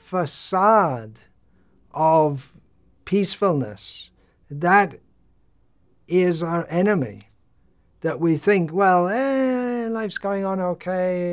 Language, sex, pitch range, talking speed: English, male, 140-175 Hz, 85 wpm